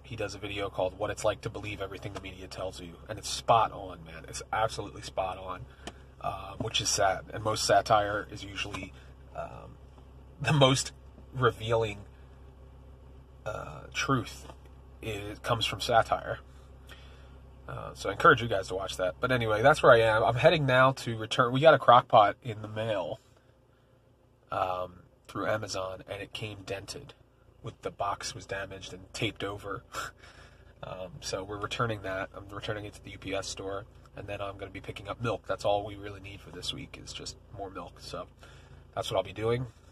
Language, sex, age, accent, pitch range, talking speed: English, male, 30-49, American, 90-115 Hz, 185 wpm